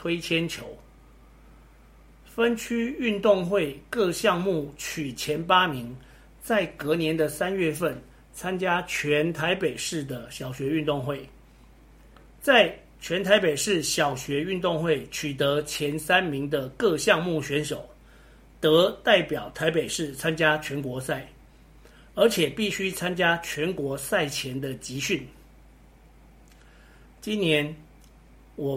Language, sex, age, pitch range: Chinese, male, 50-69, 140-175 Hz